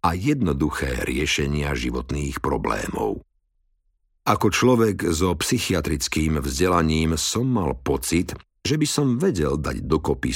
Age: 50-69